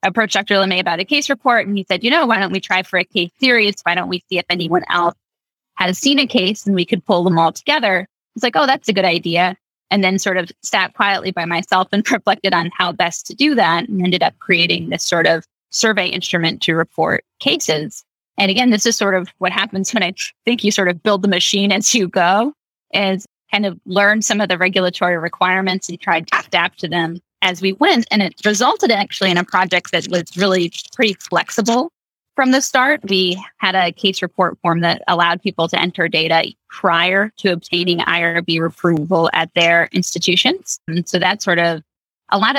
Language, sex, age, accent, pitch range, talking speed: English, female, 20-39, American, 175-205 Hz, 215 wpm